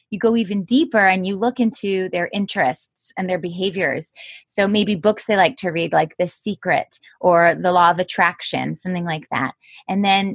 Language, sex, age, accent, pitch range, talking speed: English, female, 20-39, American, 175-215 Hz, 190 wpm